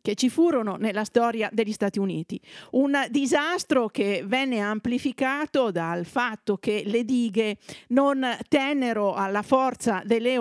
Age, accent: 50-69, native